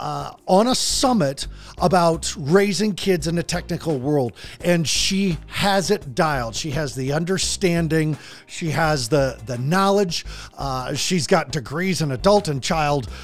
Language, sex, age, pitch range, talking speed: English, male, 40-59, 130-175 Hz, 150 wpm